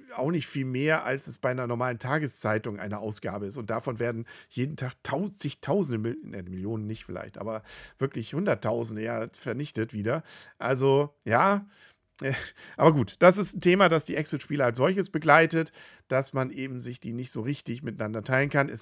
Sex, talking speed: male, 180 wpm